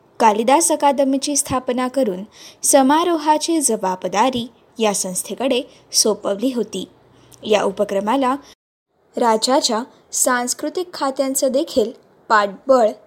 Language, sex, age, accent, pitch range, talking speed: Marathi, female, 20-39, native, 220-300 Hz, 80 wpm